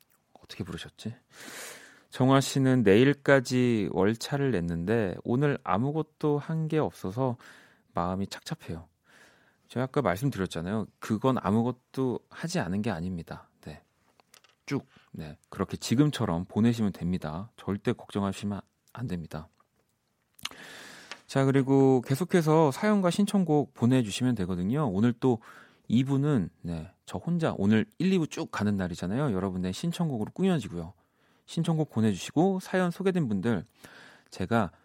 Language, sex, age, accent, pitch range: Korean, male, 30-49, native, 95-140 Hz